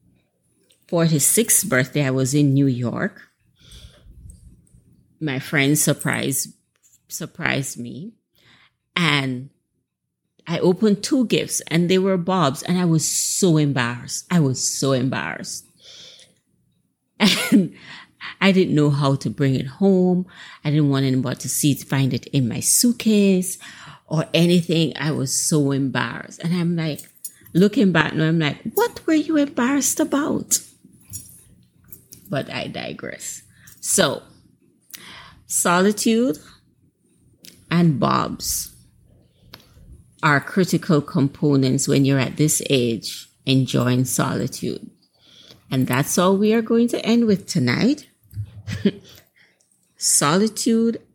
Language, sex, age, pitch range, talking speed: English, female, 30-49, 135-195 Hz, 115 wpm